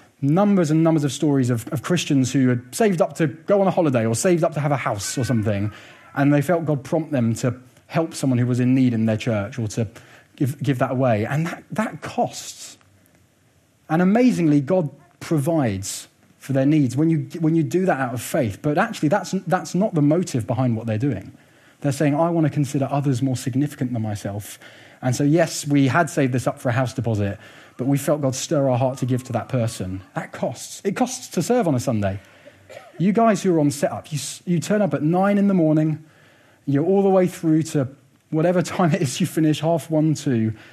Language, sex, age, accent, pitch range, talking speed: English, male, 30-49, British, 125-165 Hz, 225 wpm